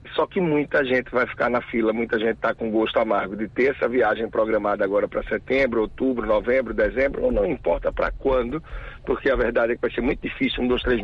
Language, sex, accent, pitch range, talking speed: Portuguese, male, Brazilian, 115-160 Hz, 230 wpm